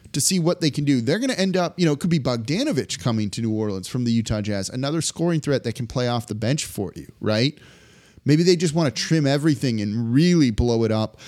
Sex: male